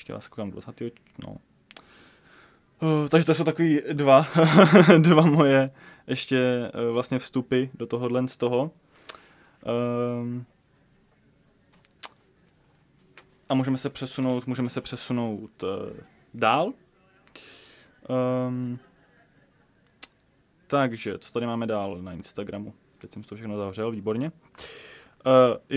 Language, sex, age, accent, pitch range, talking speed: Czech, male, 20-39, native, 115-135 Hz, 105 wpm